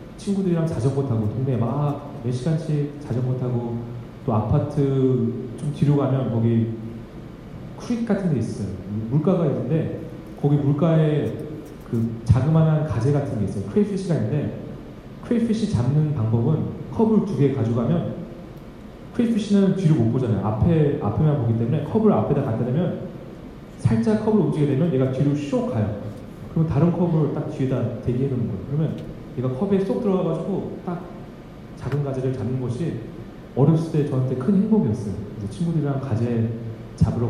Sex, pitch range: male, 120-165 Hz